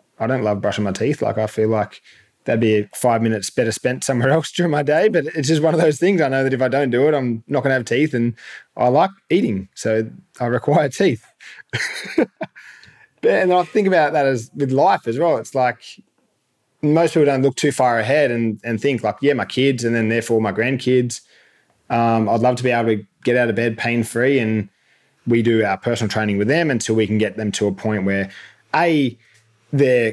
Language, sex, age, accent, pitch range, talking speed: English, male, 20-39, Australian, 110-130 Hz, 225 wpm